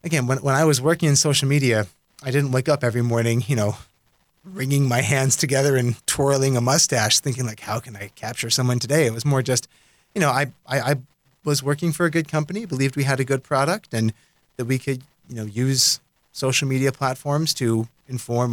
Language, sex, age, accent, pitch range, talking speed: English, male, 30-49, American, 115-145 Hz, 215 wpm